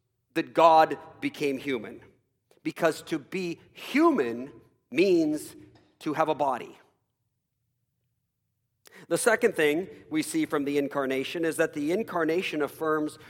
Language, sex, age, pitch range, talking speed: English, male, 50-69, 140-220 Hz, 115 wpm